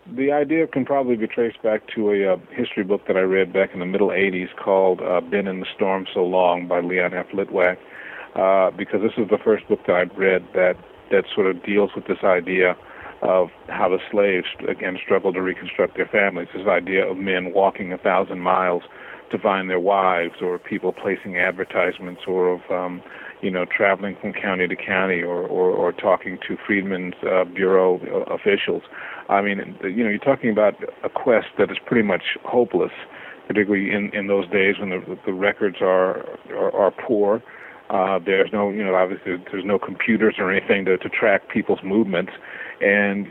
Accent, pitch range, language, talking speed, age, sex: American, 90-100 Hz, English, 195 wpm, 40-59, male